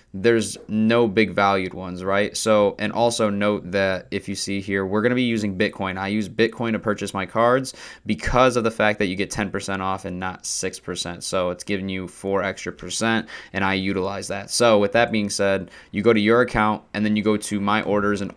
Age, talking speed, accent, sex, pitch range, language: 20-39, 220 wpm, American, male, 95-110 Hz, English